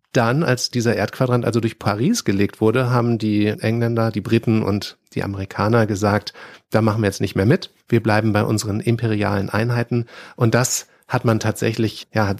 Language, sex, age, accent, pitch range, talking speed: German, male, 40-59, German, 110-125 Hz, 185 wpm